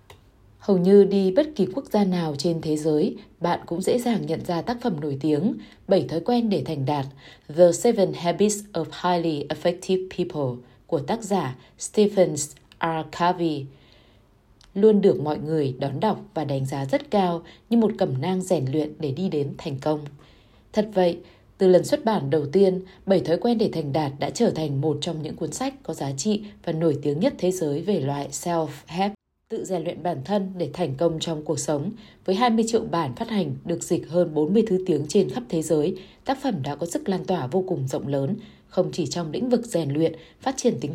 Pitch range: 150-200 Hz